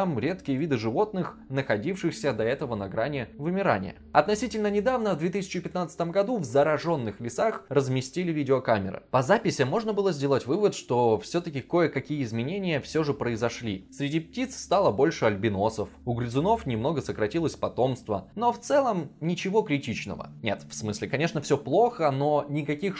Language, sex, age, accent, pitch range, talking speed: Russian, male, 20-39, native, 120-170 Hz, 145 wpm